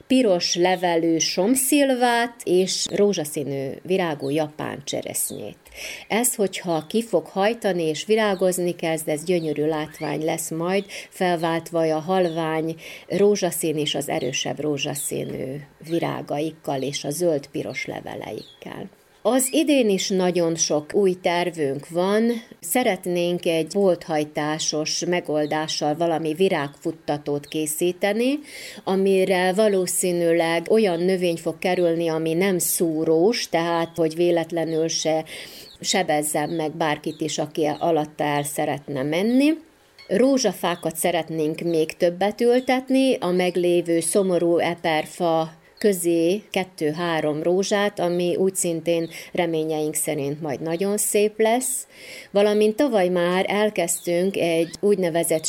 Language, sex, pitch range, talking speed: Hungarian, female, 160-200 Hz, 105 wpm